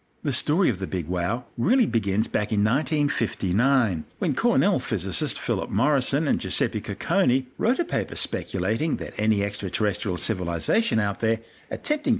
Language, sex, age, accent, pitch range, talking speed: English, male, 50-69, Australian, 95-135 Hz, 150 wpm